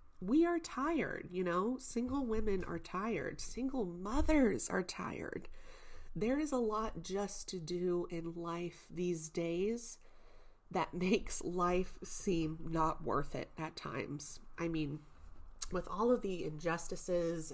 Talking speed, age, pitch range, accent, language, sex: 135 wpm, 30-49, 165-205 Hz, American, English, female